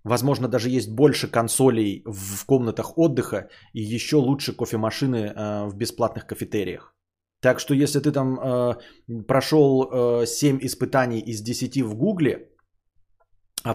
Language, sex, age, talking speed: Bulgarian, male, 20-39, 120 wpm